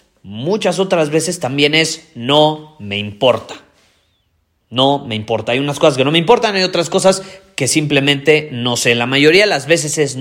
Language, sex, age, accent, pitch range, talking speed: Spanish, male, 30-49, Mexican, 125-160 Hz, 180 wpm